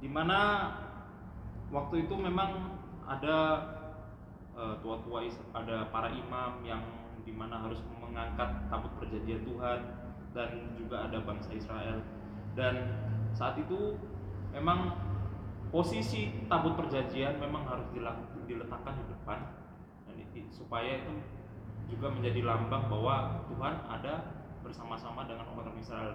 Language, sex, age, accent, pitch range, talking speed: Indonesian, male, 20-39, native, 105-135 Hz, 105 wpm